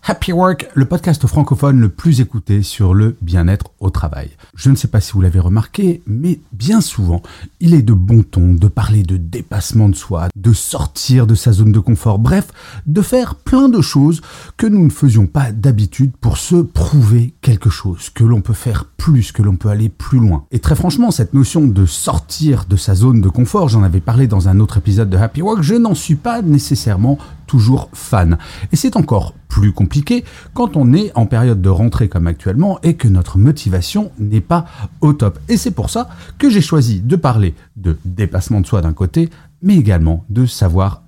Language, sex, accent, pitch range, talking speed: French, male, French, 100-155 Hz, 205 wpm